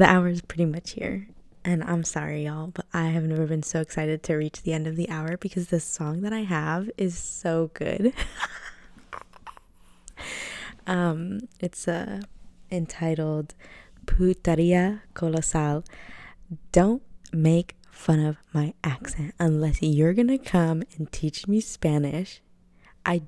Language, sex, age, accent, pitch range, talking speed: English, female, 20-39, American, 155-185 Hz, 140 wpm